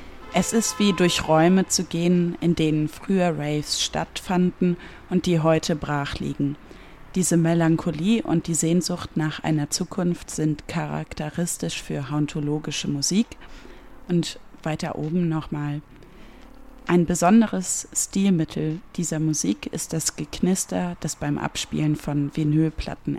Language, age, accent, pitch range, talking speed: German, 30-49, German, 150-175 Hz, 120 wpm